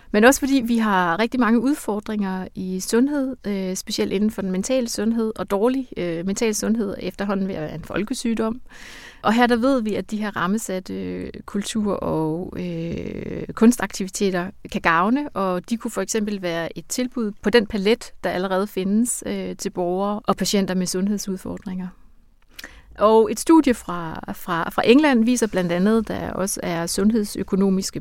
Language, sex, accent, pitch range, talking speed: Danish, female, native, 185-225 Hz, 160 wpm